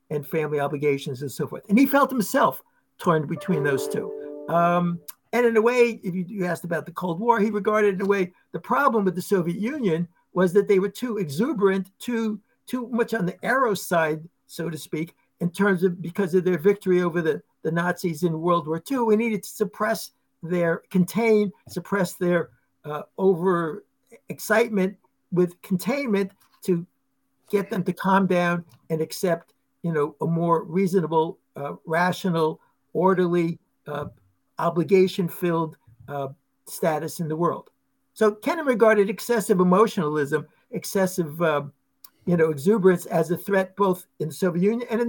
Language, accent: English, American